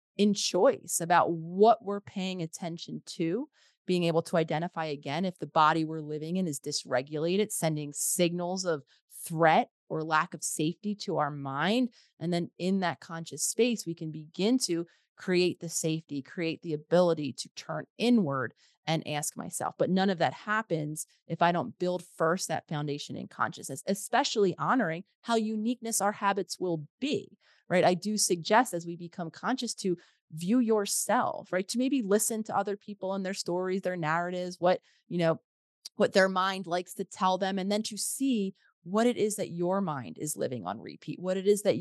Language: English